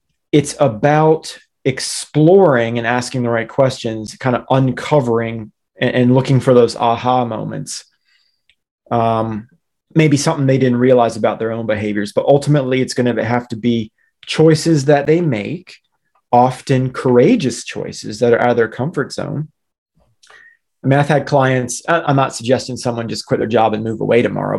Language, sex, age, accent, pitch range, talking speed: English, male, 30-49, American, 115-145 Hz, 160 wpm